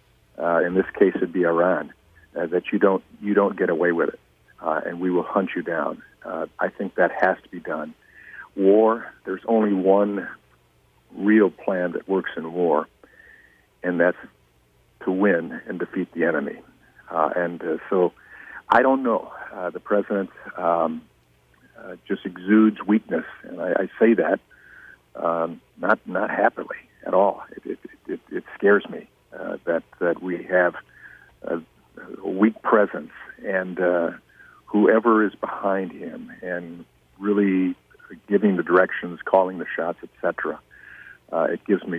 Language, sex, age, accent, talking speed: English, male, 50-69, American, 160 wpm